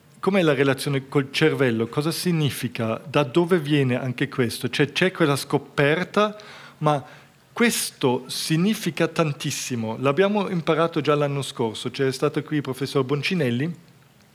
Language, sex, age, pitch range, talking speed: Italian, male, 40-59, 135-170 Hz, 135 wpm